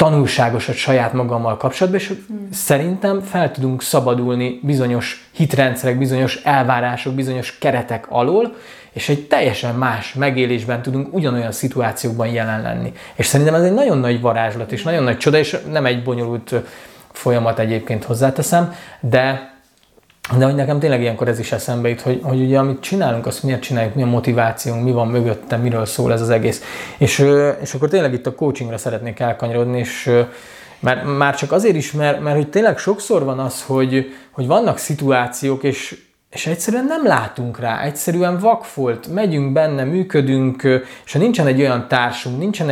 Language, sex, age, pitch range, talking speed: Hungarian, male, 20-39, 120-145 Hz, 165 wpm